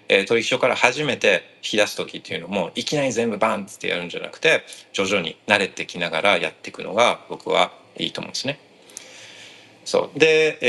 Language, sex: Japanese, male